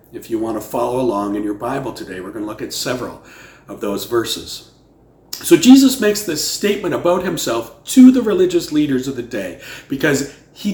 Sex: male